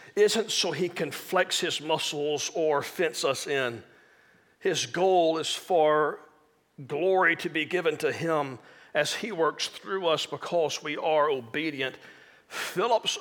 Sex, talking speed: male, 140 wpm